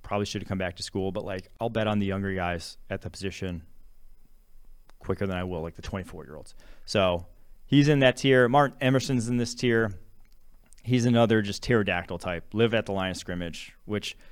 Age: 30-49